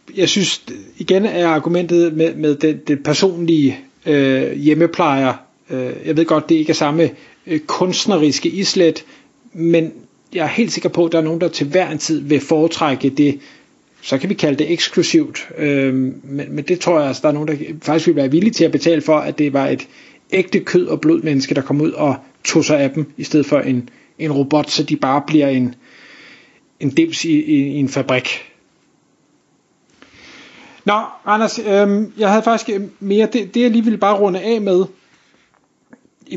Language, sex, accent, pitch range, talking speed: Danish, male, native, 150-200 Hz, 195 wpm